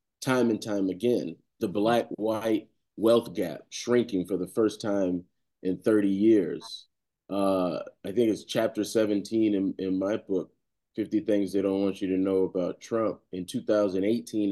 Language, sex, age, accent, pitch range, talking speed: English, male, 30-49, American, 95-120 Hz, 155 wpm